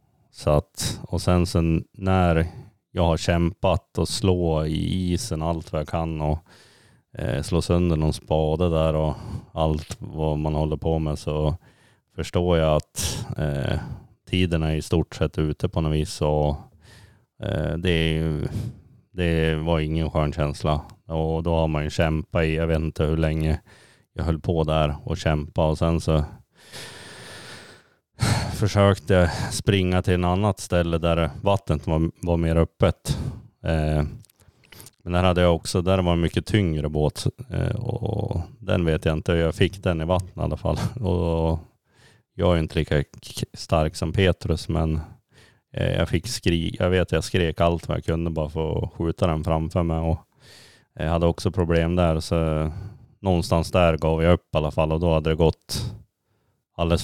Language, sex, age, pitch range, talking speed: Swedish, male, 30-49, 80-95 Hz, 160 wpm